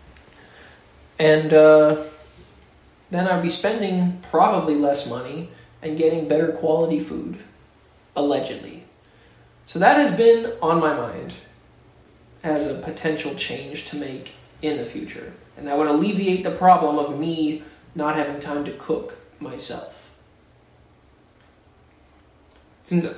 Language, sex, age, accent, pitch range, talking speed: English, male, 20-39, American, 145-185 Hz, 120 wpm